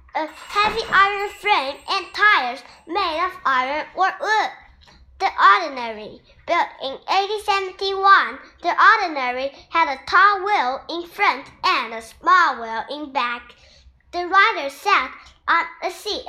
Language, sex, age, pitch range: Chinese, male, 10-29, 270-385 Hz